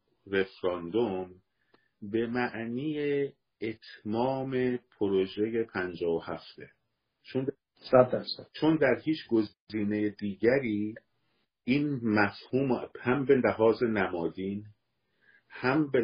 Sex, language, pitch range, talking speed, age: male, Persian, 105-130 Hz, 80 wpm, 50-69